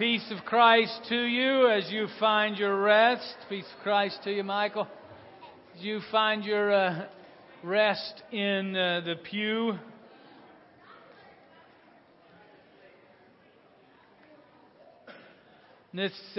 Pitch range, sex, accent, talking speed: 155-205 Hz, male, American, 100 wpm